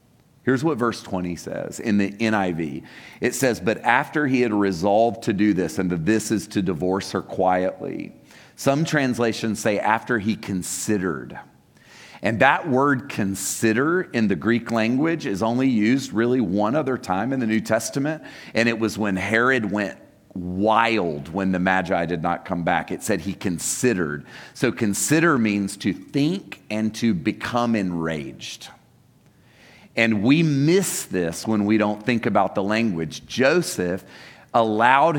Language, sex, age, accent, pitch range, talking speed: English, male, 40-59, American, 100-130 Hz, 155 wpm